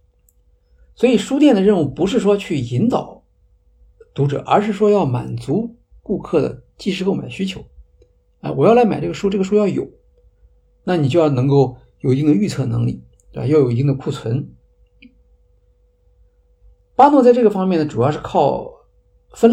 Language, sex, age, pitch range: Chinese, male, 50-69, 100-165 Hz